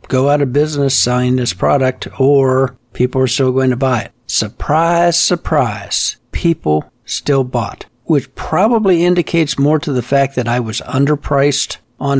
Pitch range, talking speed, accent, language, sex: 115-140 Hz, 155 wpm, American, English, male